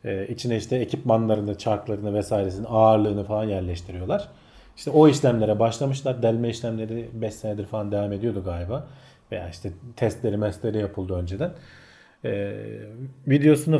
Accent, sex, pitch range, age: native, male, 110-145 Hz, 40-59